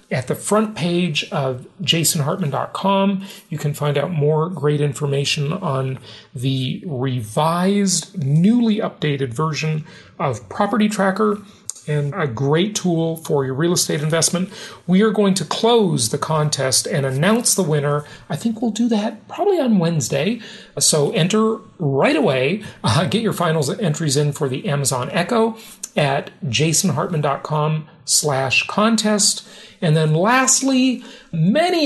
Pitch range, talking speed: 145-200 Hz, 135 wpm